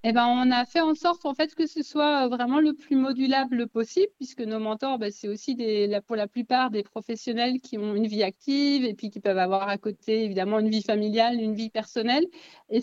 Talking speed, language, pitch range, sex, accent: 230 wpm, French, 210-265 Hz, female, French